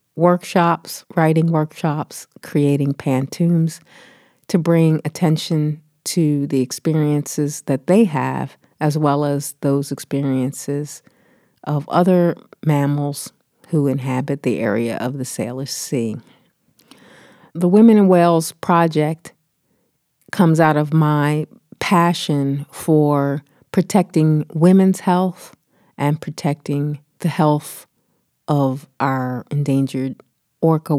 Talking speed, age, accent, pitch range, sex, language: 100 wpm, 40-59, American, 140-170 Hz, female, English